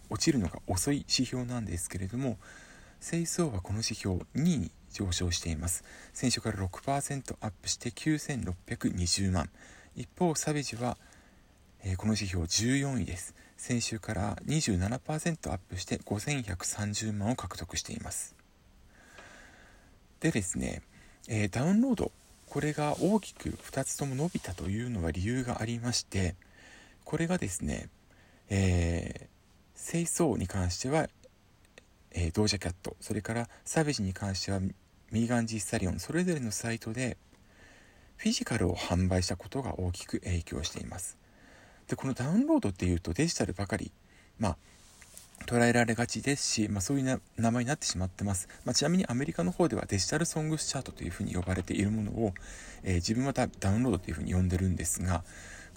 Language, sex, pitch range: Japanese, male, 90-130 Hz